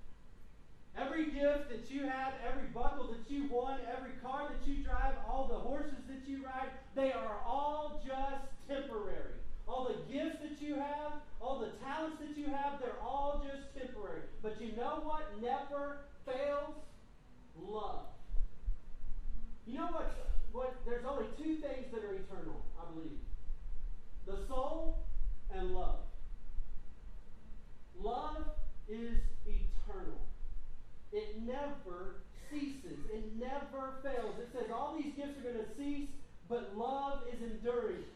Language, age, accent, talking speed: English, 40-59, American, 140 wpm